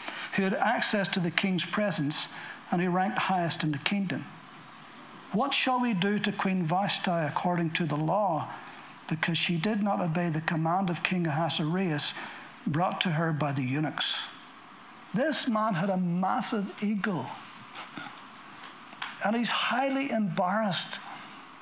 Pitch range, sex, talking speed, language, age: 180-230 Hz, male, 140 wpm, English, 60-79